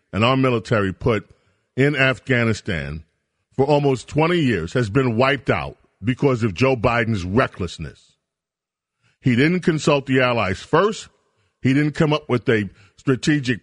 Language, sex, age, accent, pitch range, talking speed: English, male, 40-59, American, 115-145 Hz, 140 wpm